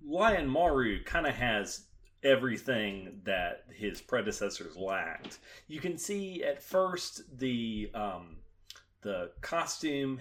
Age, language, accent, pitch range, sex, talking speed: 30-49, English, American, 95-130 Hz, male, 110 wpm